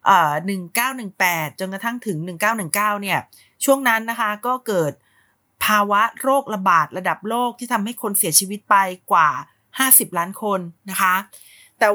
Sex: female